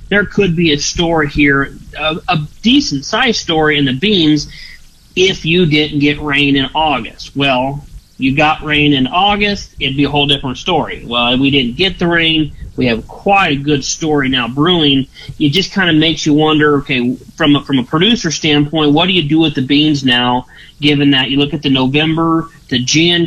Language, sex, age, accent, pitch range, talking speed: English, male, 30-49, American, 140-175 Hz, 205 wpm